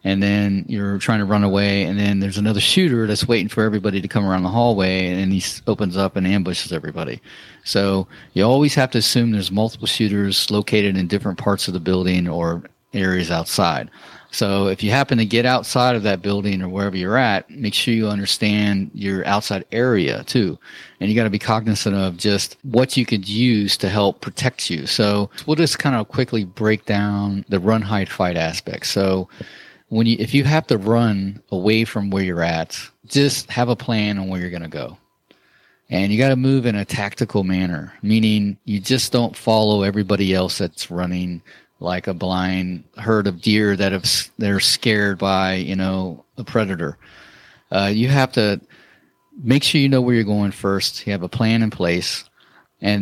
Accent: American